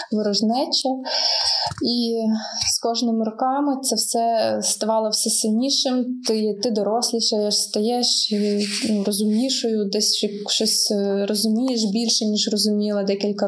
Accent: native